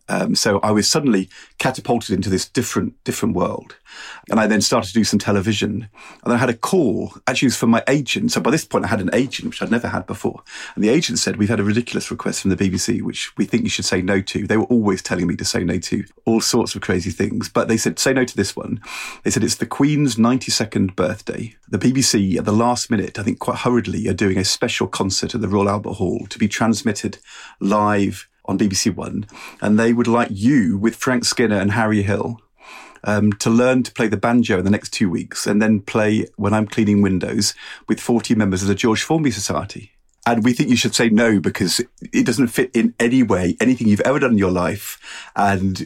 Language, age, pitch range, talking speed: English, 40-59, 100-120 Hz, 235 wpm